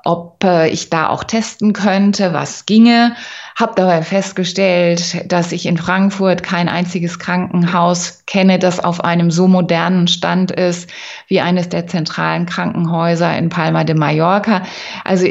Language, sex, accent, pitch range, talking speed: German, female, German, 160-185 Hz, 140 wpm